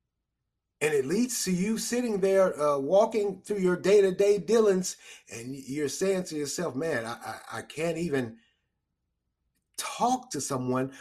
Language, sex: English, male